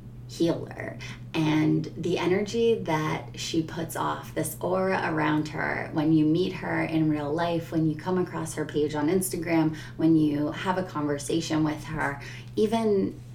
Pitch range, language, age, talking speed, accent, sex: 150-165 Hz, English, 20-39, 155 wpm, American, female